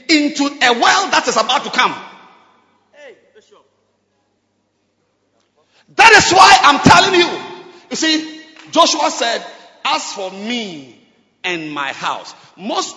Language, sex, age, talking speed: English, male, 50-69, 115 wpm